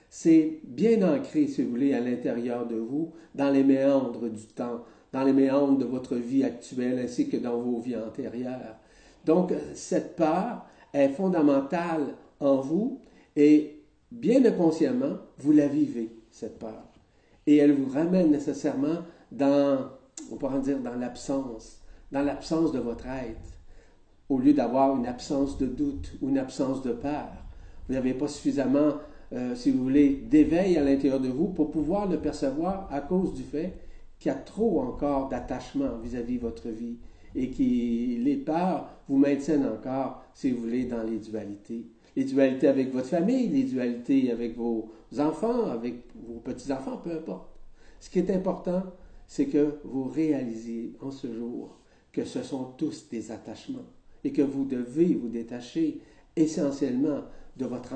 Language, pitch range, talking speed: French, 120-175 Hz, 165 wpm